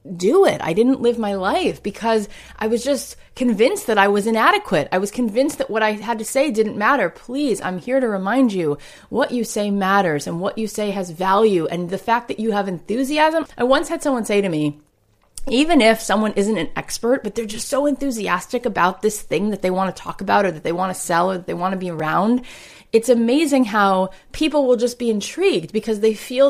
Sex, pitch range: female, 175-245 Hz